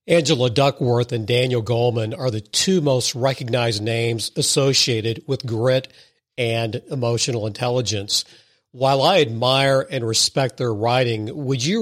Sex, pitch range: male, 115-135 Hz